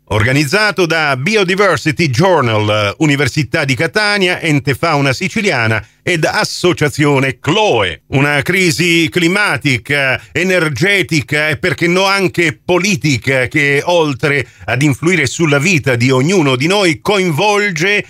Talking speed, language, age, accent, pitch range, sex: 110 wpm, Italian, 40-59, native, 125-180 Hz, male